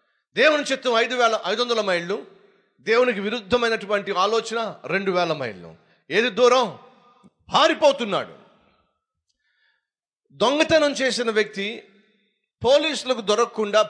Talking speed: 90 wpm